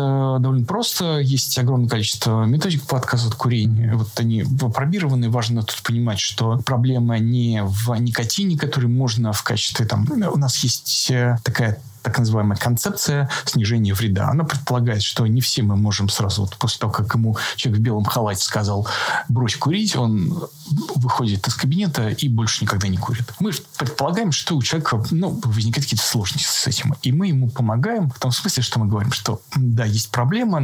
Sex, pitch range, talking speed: male, 110-135 Hz, 175 wpm